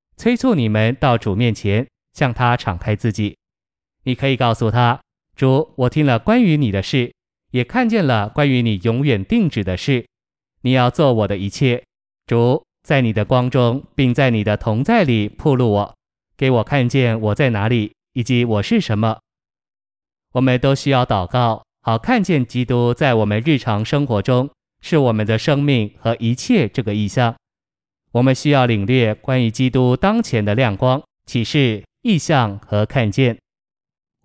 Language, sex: Chinese, male